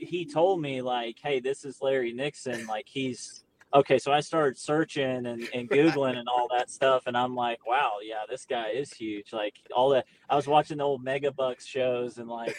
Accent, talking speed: American, 215 wpm